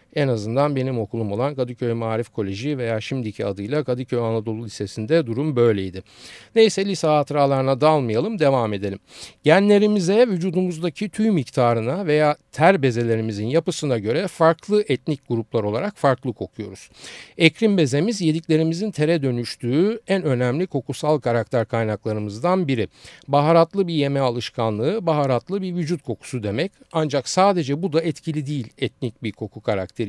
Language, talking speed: Turkish, 135 wpm